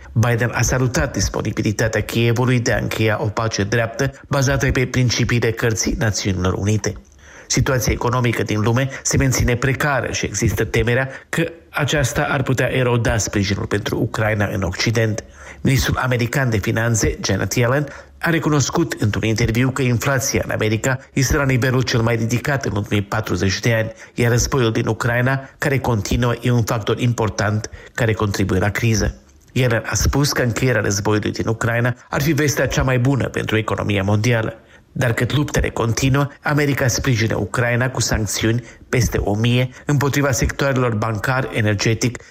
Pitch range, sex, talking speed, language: 110-130 Hz, male, 155 wpm, Romanian